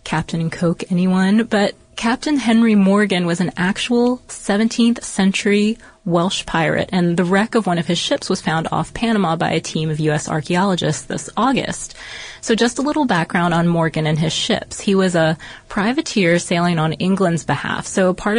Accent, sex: American, female